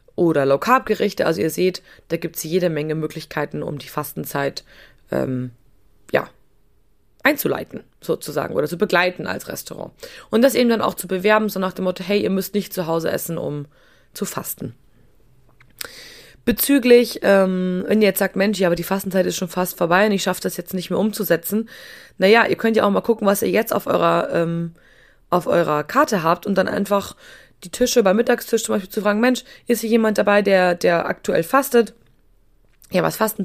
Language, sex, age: German, female, 20-39